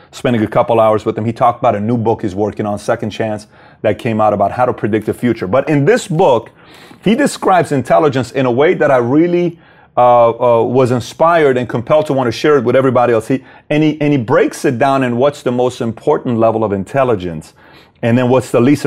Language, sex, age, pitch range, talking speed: English, male, 30-49, 115-145 Hz, 235 wpm